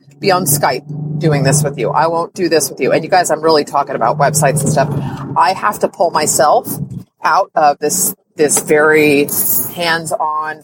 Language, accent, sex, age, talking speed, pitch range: English, American, female, 30-49, 190 wpm, 160-220 Hz